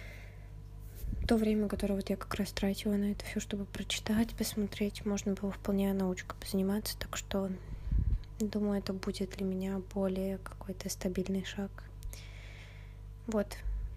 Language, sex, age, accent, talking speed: Russian, female, 20-39, native, 130 wpm